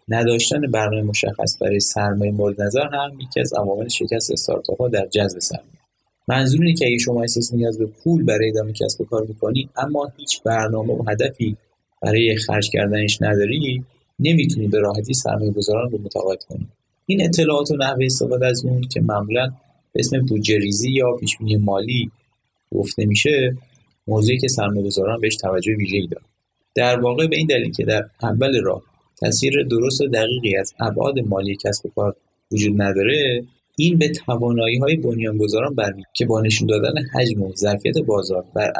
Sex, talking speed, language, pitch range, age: male, 155 wpm, Persian, 105-135 Hz, 30-49